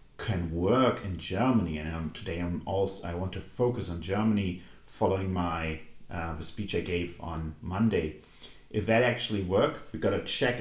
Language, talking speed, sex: English, 180 wpm, male